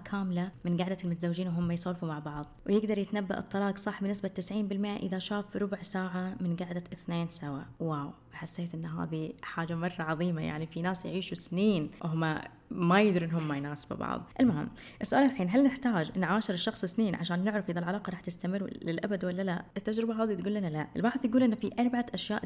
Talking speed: 185 wpm